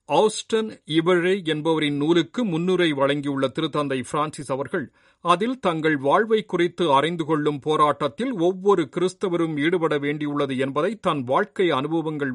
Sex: male